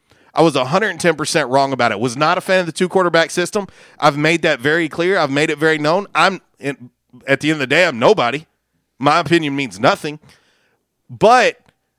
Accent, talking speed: American, 190 wpm